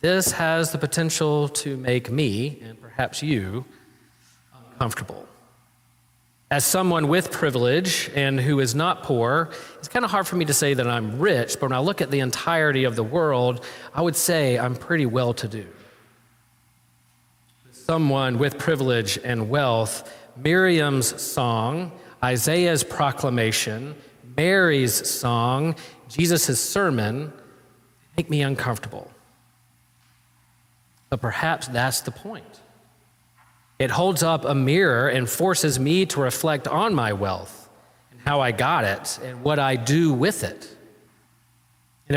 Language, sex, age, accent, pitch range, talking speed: English, male, 40-59, American, 120-155 Hz, 135 wpm